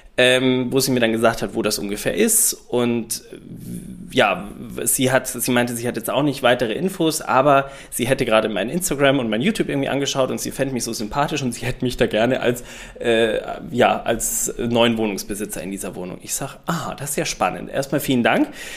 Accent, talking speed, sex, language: German, 200 wpm, male, German